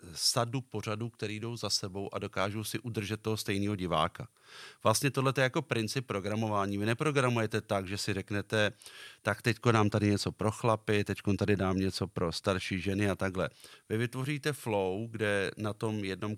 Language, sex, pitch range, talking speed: Czech, male, 100-120 Hz, 175 wpm